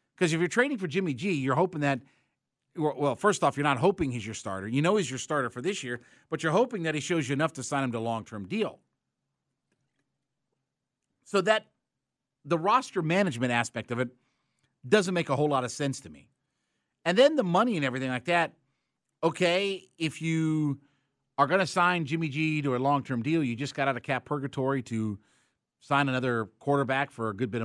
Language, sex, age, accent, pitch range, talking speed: English, male, 40-59, American, 120-155 Hz, 205 wpm